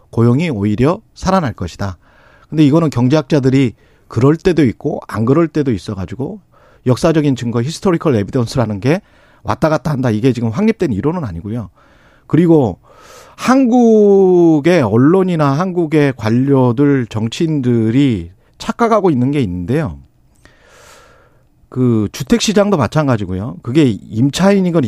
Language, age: Korean, 40-59